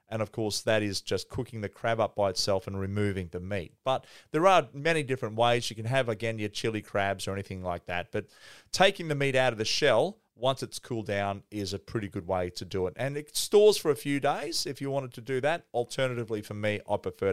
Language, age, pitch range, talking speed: English, 30-49, 110-140 Hz, 245 wpm